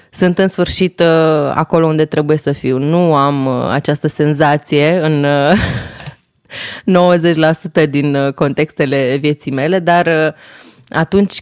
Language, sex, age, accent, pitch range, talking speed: Romanian, female, 20-39, native, 145-180 Hz, 105 wpm